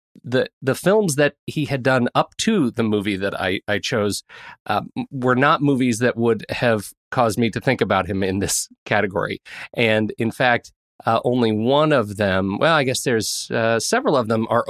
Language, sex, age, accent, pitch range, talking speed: English, male, 30-49, American, 105-135 Hz, 195 wpm